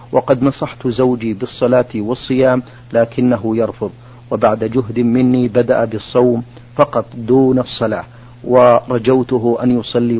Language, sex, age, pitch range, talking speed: Arabic, male, 50-69, 115-125 Hz, 105 wpm